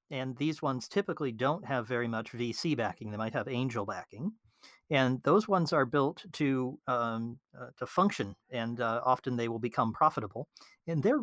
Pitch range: 115-145 Hz